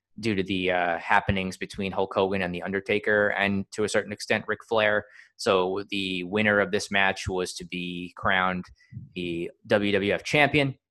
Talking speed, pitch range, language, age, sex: 170 wpm, 95-115 Hz, English, 20-39, male